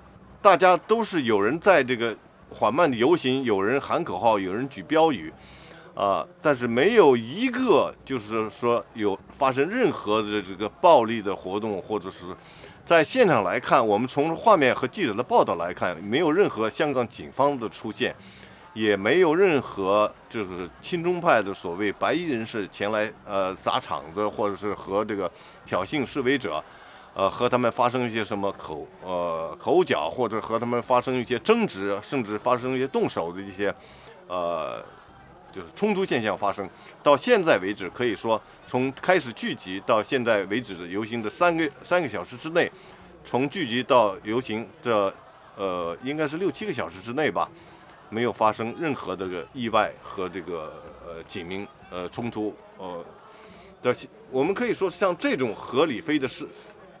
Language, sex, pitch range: English, male, 105-145 Hz